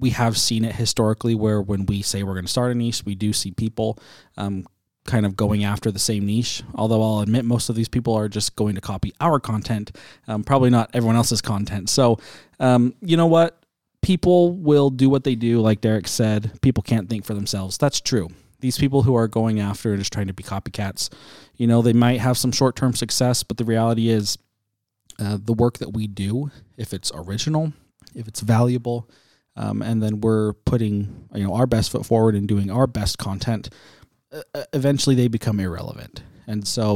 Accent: American